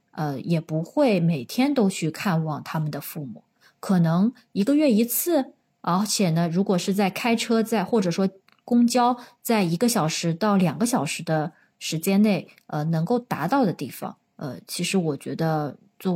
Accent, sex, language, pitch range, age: native, female, Chinese, 170-235 Hz, 20-39